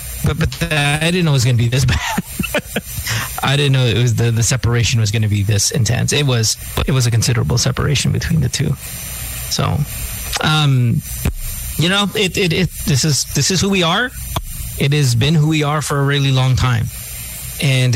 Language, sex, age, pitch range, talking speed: English, male, 30-49, 115-145 Hz, 210 wpm